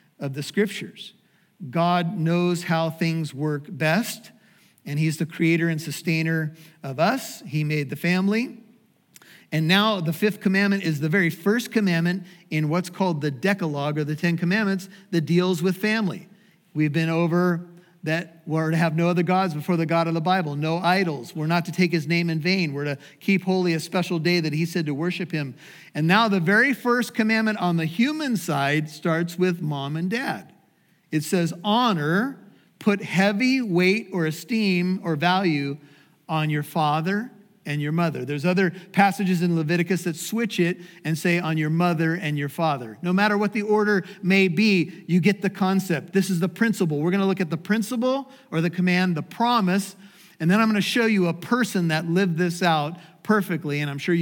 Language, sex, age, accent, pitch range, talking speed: English, male, 50-69, American, 165-200 Hz, 195 wpm